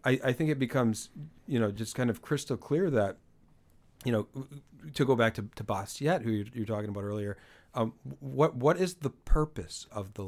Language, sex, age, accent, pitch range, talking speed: English, male, 40-59, American, 110-140 Hz, 205 wpm